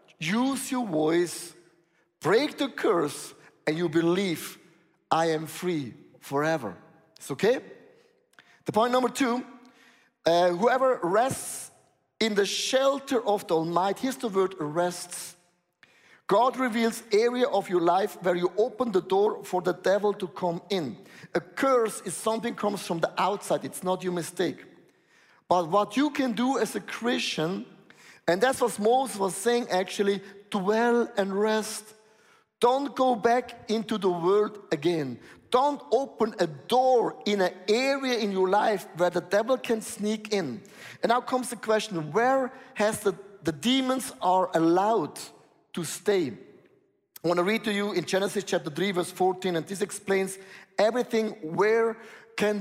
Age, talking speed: 50-69, 155 wpm